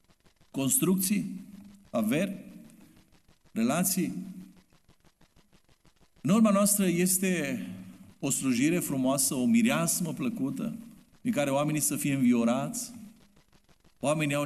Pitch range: 185-230 Hz